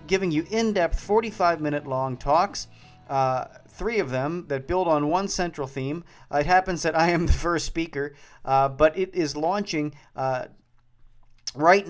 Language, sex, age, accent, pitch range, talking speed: English, male, 40-59, American, 130-160 Hz, 155 wpm